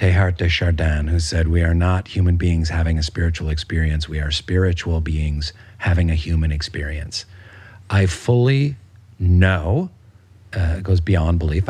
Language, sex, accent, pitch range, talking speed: English, male, American, 90-110 Hz, 155 wpm